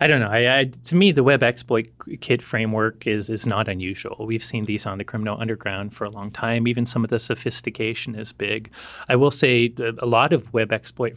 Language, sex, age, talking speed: English, male, 30-49, 225 wpm